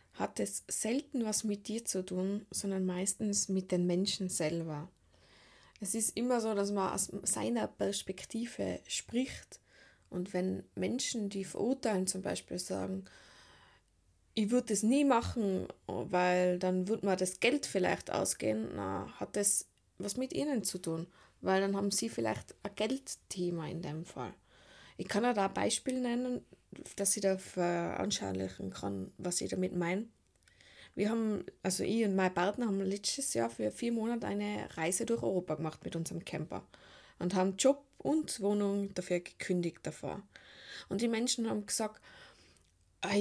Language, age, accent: German, 20-39, German